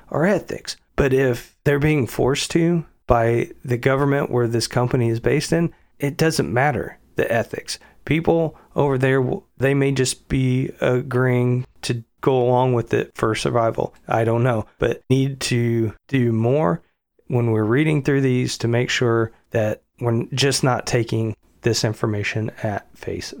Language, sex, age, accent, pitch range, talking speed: English, male, 40-59, American, 120-145 Hz, 160 wpm